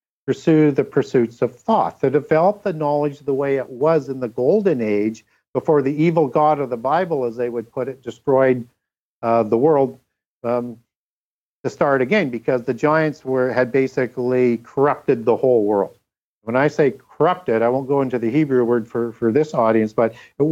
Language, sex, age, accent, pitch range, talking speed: English, male, 50-69, American, 120-150 Hz, 190 wpm